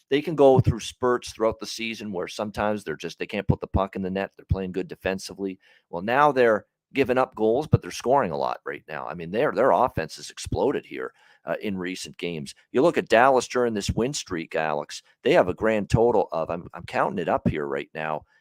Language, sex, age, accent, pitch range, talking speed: English, male, 40-59, American, 95-115 Hz, 235 wpm